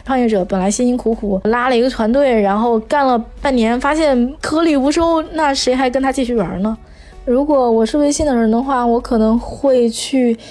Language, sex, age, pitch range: Chinese, female, 20-39, 205-255 Hz